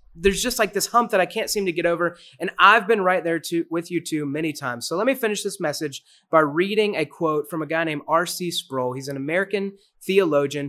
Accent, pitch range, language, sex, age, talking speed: American, 145-190 Hz, English, male, 30-49, 240 wpm